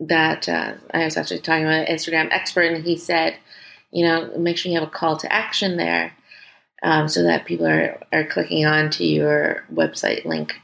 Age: 30-49